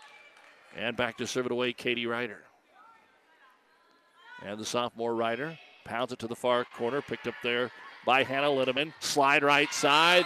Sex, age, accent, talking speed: male, 50-69, American, 160 wpm